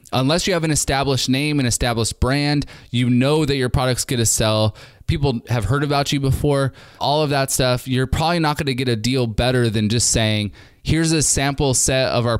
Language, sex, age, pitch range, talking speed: English, male, 20-39, 115-140 Hz, 210 wpm